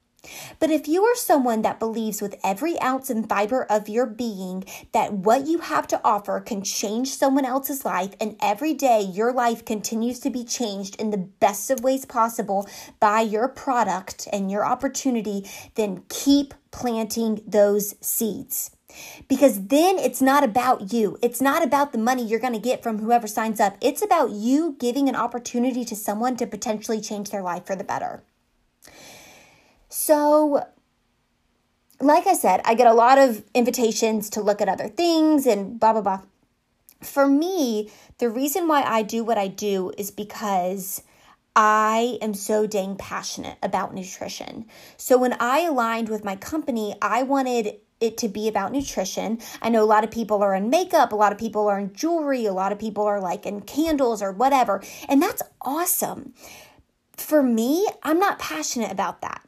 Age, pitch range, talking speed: 20-39, 210-270 Hz, 175 wpm